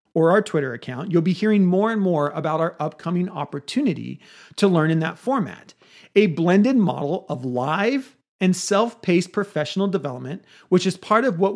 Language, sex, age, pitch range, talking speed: English, male, 40-59, 165-230 Hz, 170 wpm